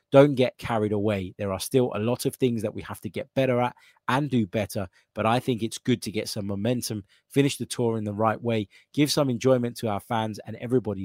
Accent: British